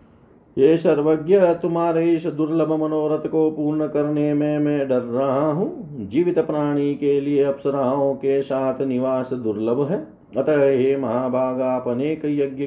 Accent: native